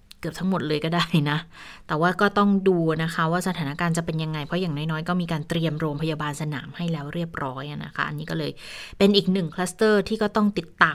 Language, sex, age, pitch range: Thai, female, 20-39, 170-220 Hz